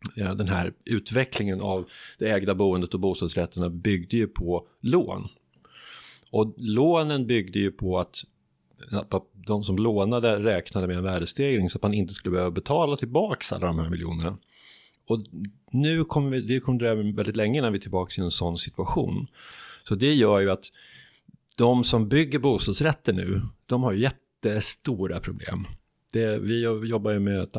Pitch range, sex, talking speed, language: 90-120 Hz, male, 165 wpm, Swedish